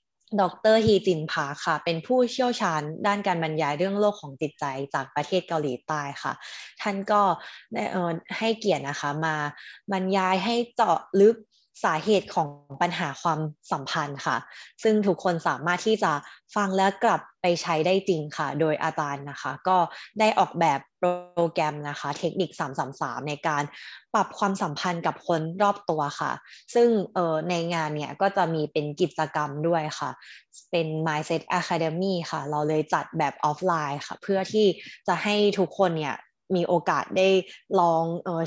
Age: 20-39